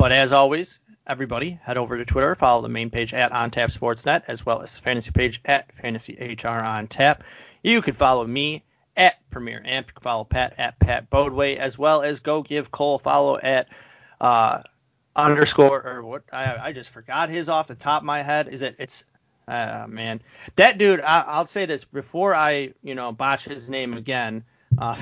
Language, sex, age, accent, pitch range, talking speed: English, male, 30-49, American, 120-140 Hz, 205 wpm